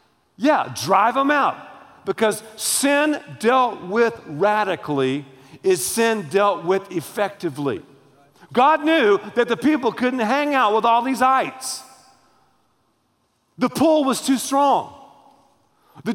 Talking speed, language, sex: 120 wpm, English, male